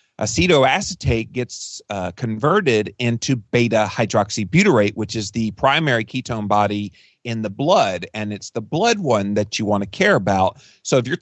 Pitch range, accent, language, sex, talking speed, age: 105-140 Hz, American, English, male, 155 wpm, 40-59